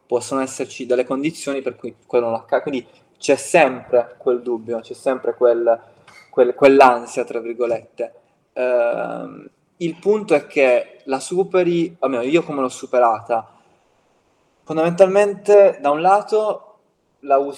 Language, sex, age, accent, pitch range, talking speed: Italian, male, 20-39, native, 120-150 Hz, 135 wpm